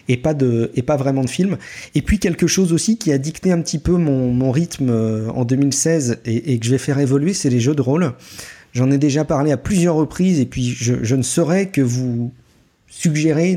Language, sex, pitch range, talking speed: French, male, 115-145 Hz, 230 wpm